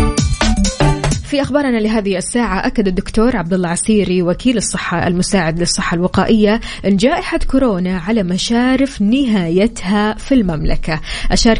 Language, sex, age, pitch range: Arabic, female, 20-39, 175-220 Hz